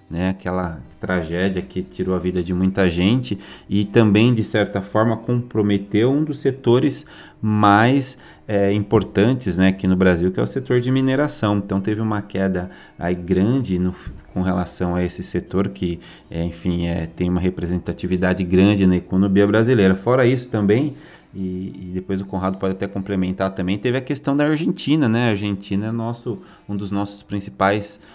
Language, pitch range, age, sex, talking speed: Portuguese, 95-105 Hz, 30-49, male, 175 wpm